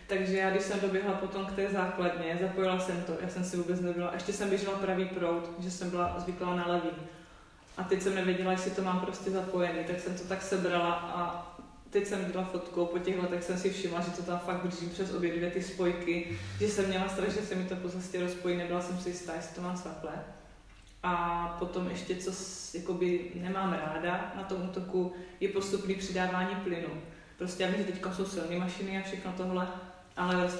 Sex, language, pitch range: female, Czech, 170-185 Hz